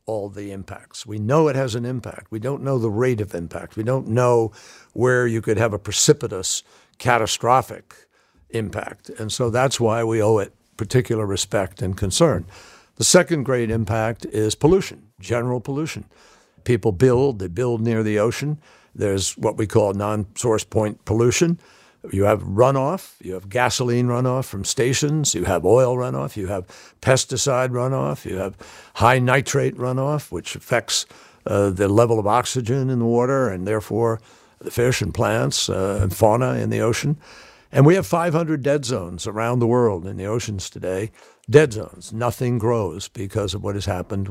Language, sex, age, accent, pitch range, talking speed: English, male, 60-79, American, 105-130 Hz, 170 wpm